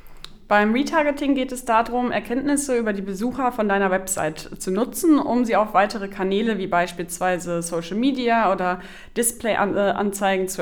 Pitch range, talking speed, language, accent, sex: 185-230 Hz, 145 wpm, German, German, female